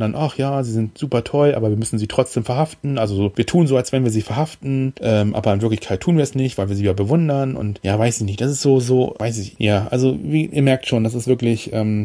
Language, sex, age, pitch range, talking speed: German, male, 30-49, 110-130 Hz, 285 wpm